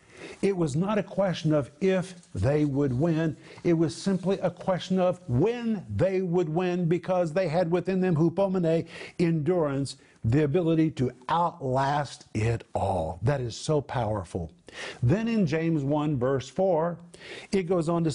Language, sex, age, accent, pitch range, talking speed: English, male, 50-69, American, 145-185 Hz, 155 wpm